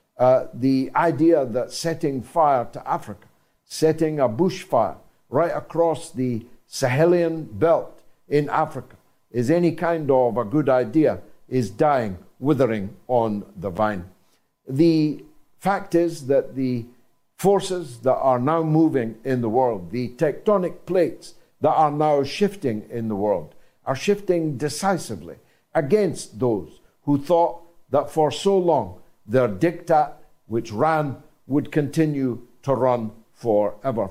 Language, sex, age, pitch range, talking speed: English, male, 60-79, 125-170 Hz, 130 wpm